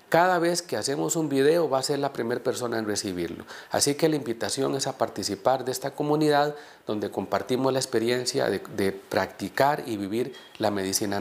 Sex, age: male, 40-59